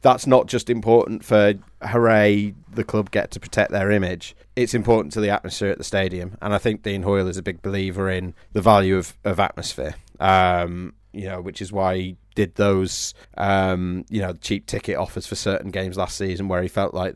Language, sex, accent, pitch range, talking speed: English, male, British, 95-110 Hz, 210 wpm